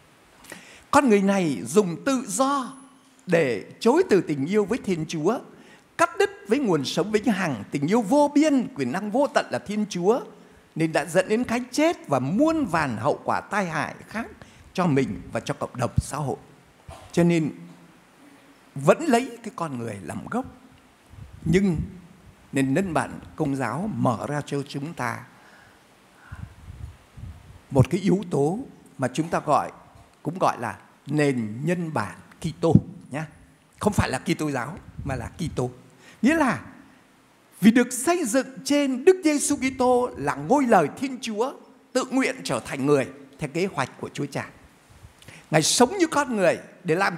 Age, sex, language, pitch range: 60-79, male, Vietnamese, 150-250 Hz